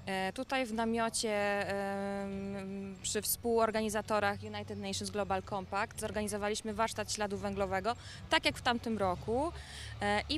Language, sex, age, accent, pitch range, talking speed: Polish, female, 20-39, native, 195-245 Hz, 110 wpm